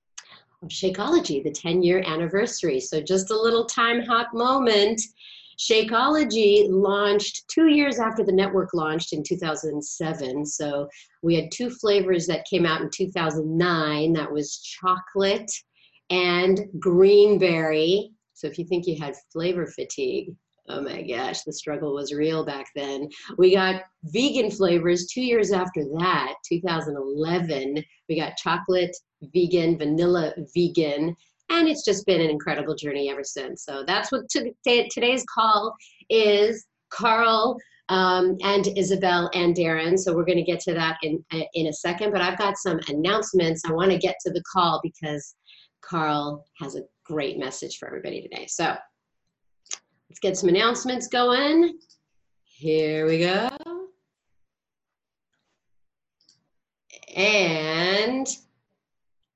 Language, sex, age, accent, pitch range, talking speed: English, female, 40-59, American, 160-210 Hz, 130 wpm